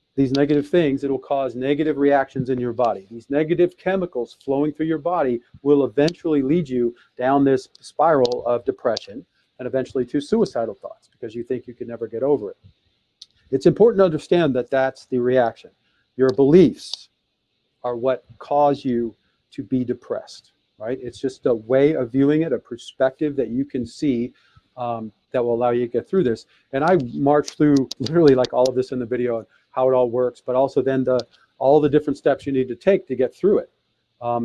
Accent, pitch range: American, 125-155 Hz